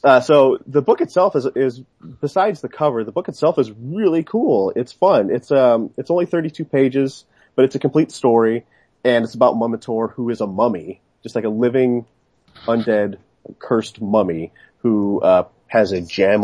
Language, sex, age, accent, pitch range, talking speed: English, male, 30-49, American, 95-130 Hz, 180 wpm